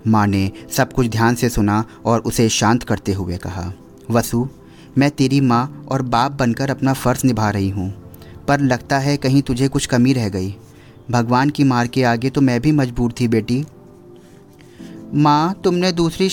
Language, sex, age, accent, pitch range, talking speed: Hindi, male, 30-49, native, 105-140 Hz, 175 wpm